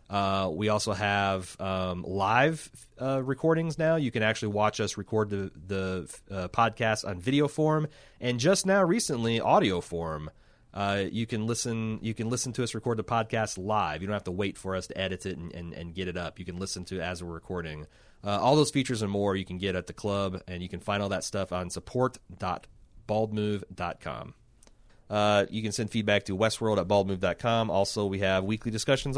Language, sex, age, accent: English, male, 30-49, American